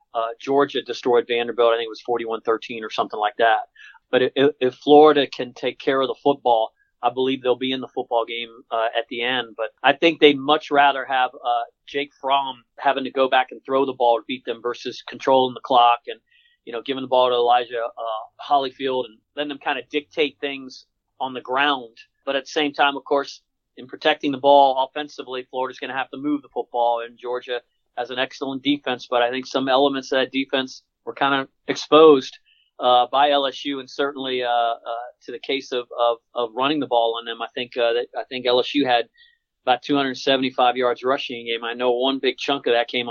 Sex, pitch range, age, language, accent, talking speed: male, 120-140 Hz, 40-59, English, American, 220 wpm